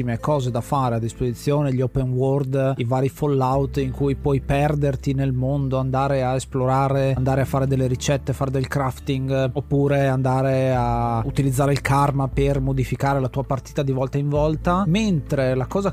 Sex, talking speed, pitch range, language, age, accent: male, 175 wpm, 135-155 Hz, Italian, 30-49, native